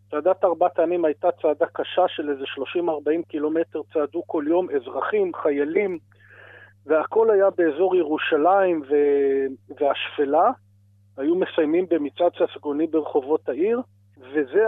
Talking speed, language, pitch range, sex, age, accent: 115 wpm, Hebrew, 150-190 Hz, male, 40-59, native